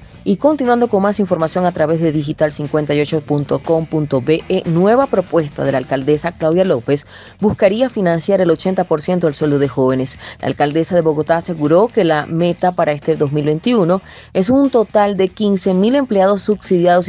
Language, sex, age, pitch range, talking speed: Spanish, female, 30-49, 150-180 Hz, 150 wpm